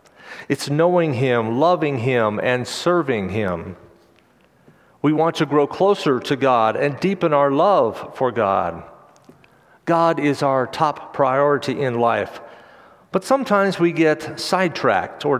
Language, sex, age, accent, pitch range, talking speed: English, male, 40-59, American, 125-165 Hz, 135 wpm